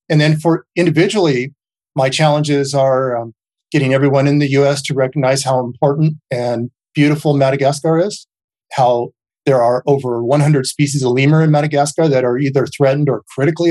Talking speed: 160 wpm